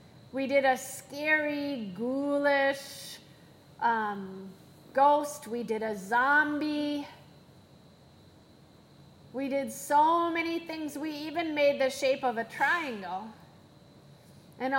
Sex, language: female, English